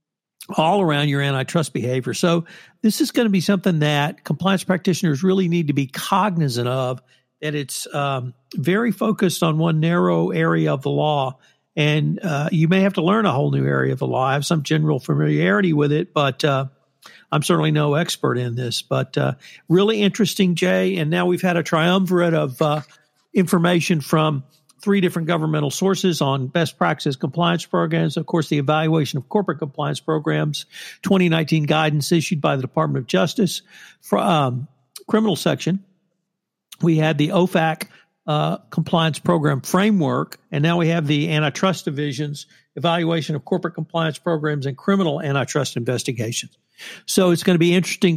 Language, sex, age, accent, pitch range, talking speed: English, male, 60-79, American, 145-180 Hz, 170 wpm